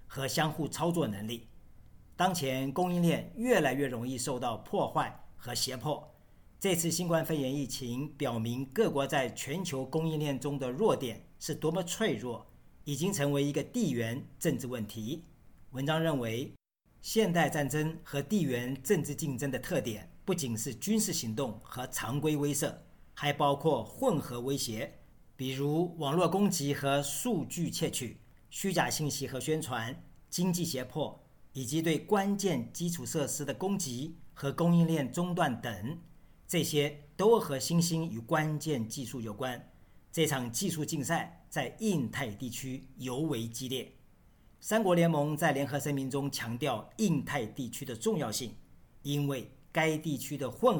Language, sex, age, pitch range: Chinese, male, 50-69, 130-165 Hz